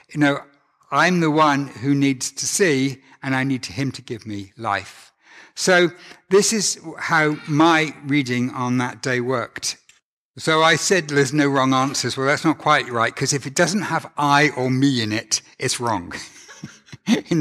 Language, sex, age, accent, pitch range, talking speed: English, male, 60-79, British, 130-165 Hz, 180 wpm